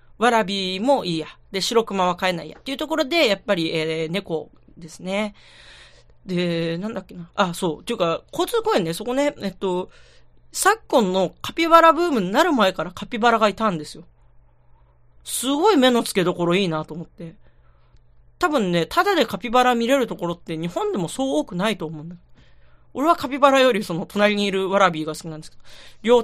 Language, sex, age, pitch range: Japanese, female, 40-59, 165-255 Hz